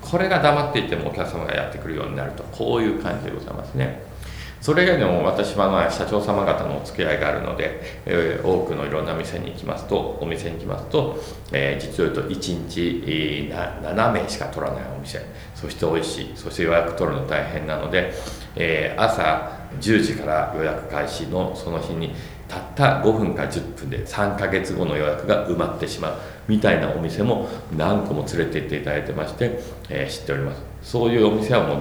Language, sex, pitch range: Japanese, male, 80-120 Hz